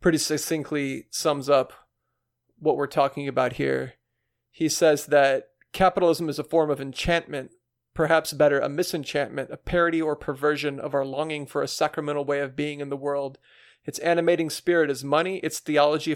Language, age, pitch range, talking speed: English, 40-59, 140-165 Hz, 165 wpm